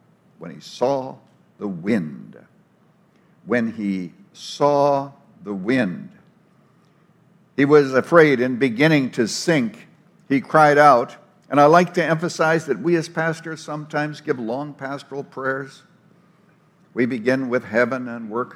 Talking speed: 130 wpm